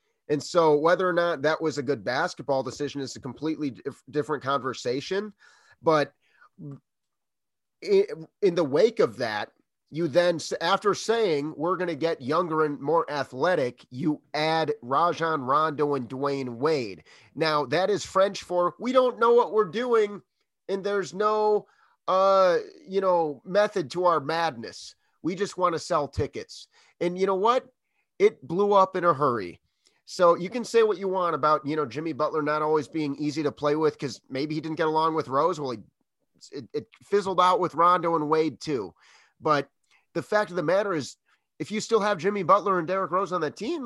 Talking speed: 185 wpm